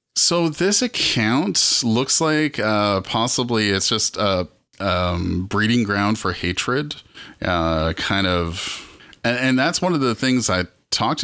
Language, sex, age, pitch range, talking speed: English, male, 30-49, 90-120 Hz, 145 wpm